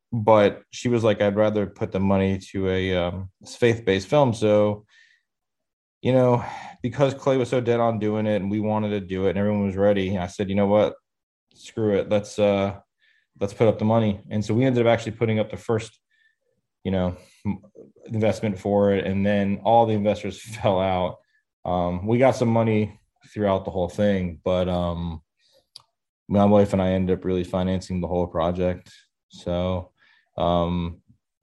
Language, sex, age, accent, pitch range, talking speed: English, male, 20-39, American, 95-115 Hz, 185 wpm